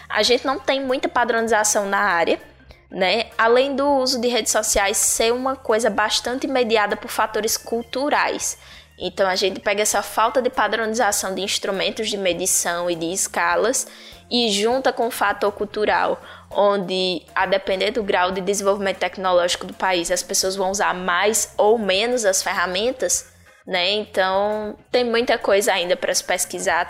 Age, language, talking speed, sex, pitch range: 10-29, Portuguese, 160 wpm, female, 190-235 Hz